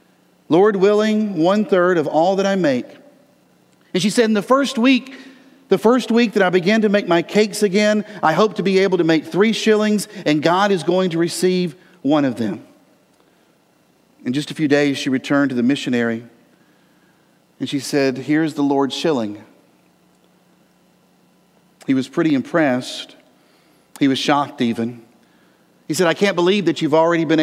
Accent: American